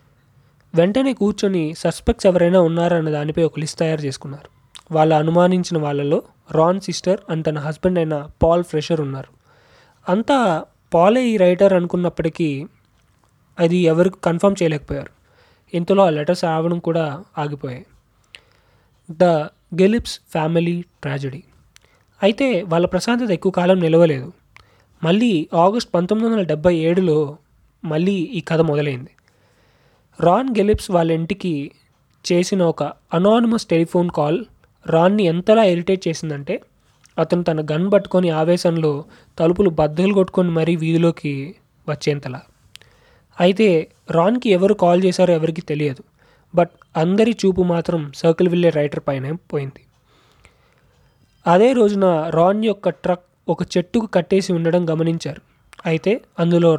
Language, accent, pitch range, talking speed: Telugu, native, 150-180 Hz, 110 wpm